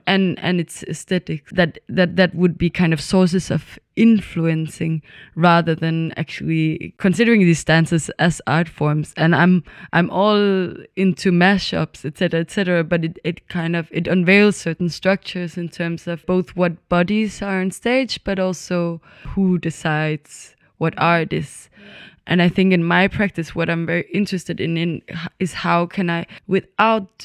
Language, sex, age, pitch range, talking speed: English, female, 20-39, 170-190 Hz, 165 wpm